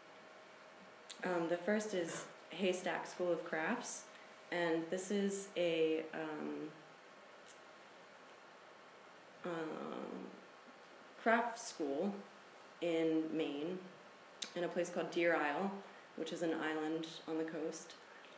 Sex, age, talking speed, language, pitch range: female, 20-39, 100 wpm, English, 160-180 Hz